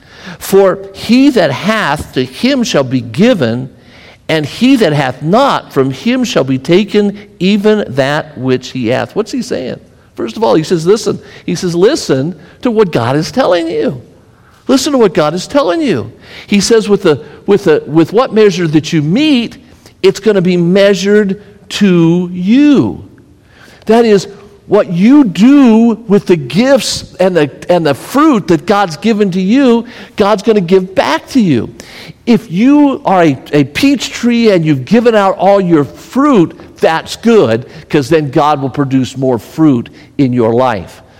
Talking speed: 175 wpm